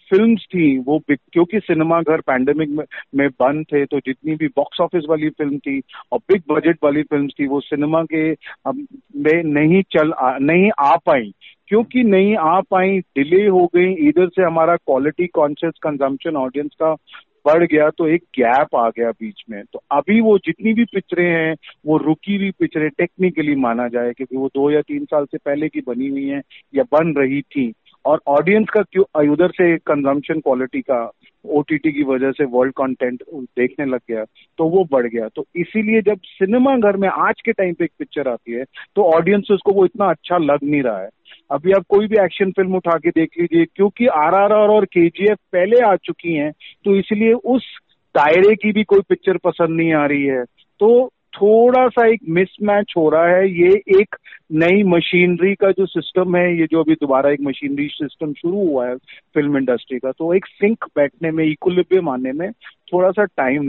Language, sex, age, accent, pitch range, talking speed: Hindi, male, 40-59, native, 145-195 Hz, 195 wpm